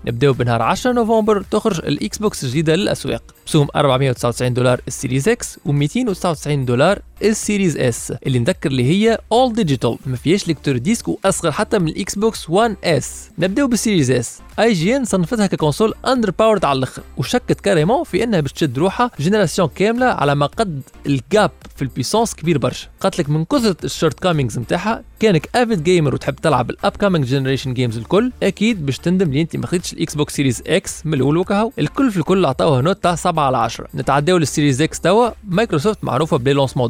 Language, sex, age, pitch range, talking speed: Arabic, male, 20-39, 135-200 Hz, 180 wpm